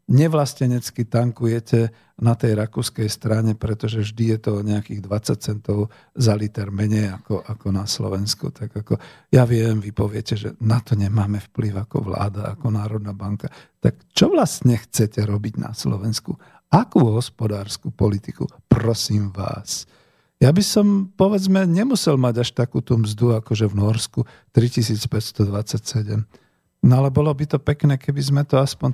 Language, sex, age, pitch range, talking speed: Slovak, male, 50-69, 110-135 Hz, 150 wpm